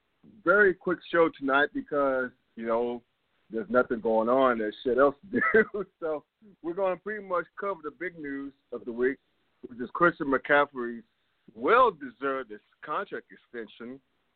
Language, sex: English, male